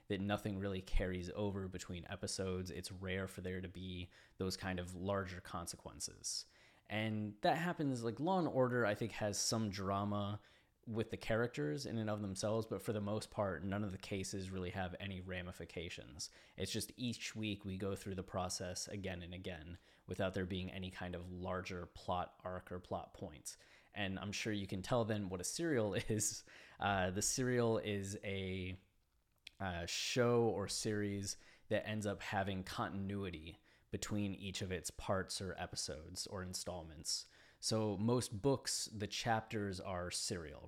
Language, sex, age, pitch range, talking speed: English, male, 20-39, 95-105 Hz, 170 wpm